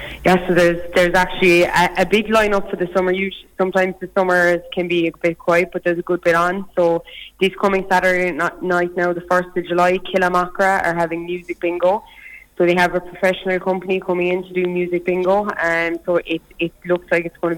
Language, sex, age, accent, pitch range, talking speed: English, female, 20-39, Irish, 170-185 Hz, 220 wpm